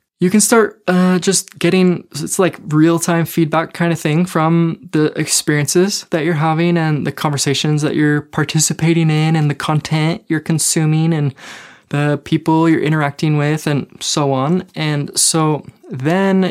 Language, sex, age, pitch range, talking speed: English, male, 20-39, 145-175 Hz, 155 wpm